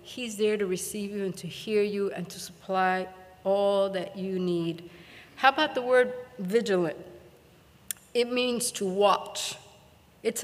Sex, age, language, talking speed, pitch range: female, 60-79, English, 150 wpm, 180-225 Hz